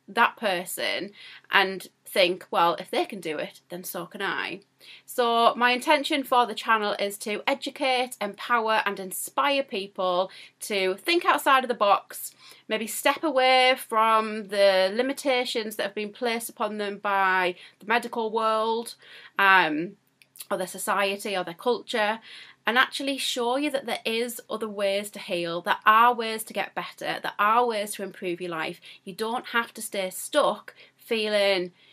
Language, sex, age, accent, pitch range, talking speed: English, female, 30-49, British, 190-240 Hz, 165 wpm